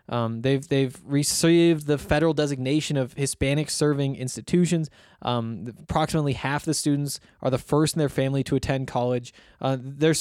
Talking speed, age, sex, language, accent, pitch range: 160 wpm, 20-39, male, English, American, 130-160 Hz